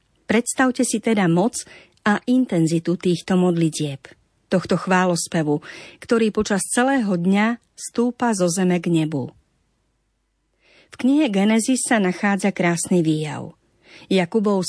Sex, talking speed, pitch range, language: female, 110 wpm, 175-225 Hz, Slovak